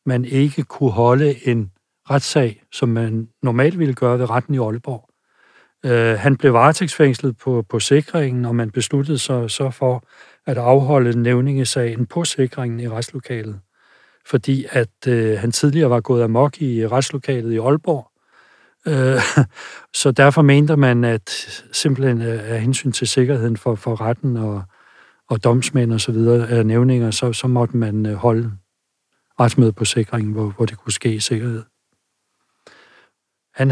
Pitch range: 115-130 Hz